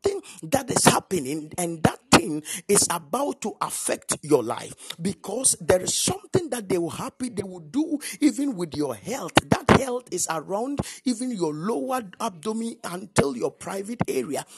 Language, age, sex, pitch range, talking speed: English, 50-69, male, 160-235 Hz, 155 wpm